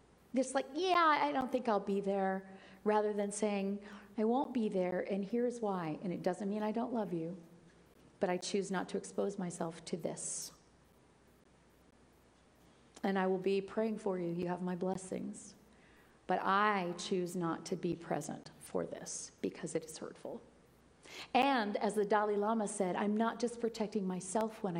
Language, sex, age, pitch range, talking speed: English, female, 40-59, 195-245 Hz, 175 wpm